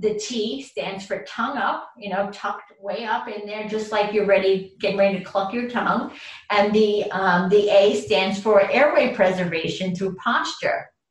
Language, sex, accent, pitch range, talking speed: English, female, American, 180-205 Hz, 180 wpm